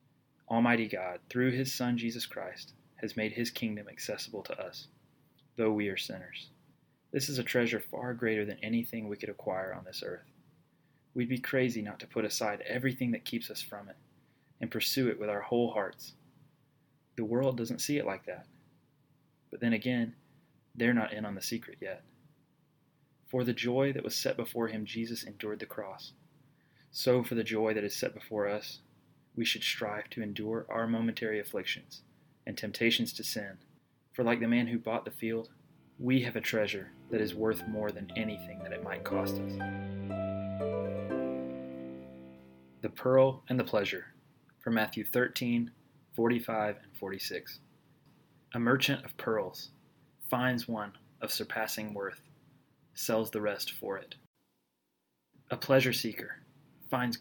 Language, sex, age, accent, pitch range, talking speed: English, male, 20-39, American, 105-130 Hz, 160 wpm